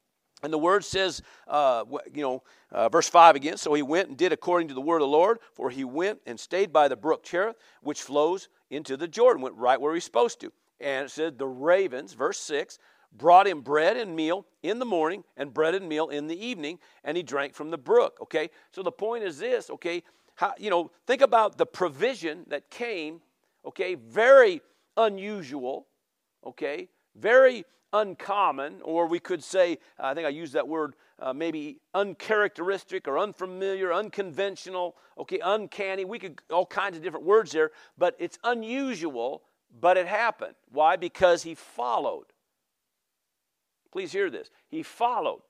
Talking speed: 175 wpm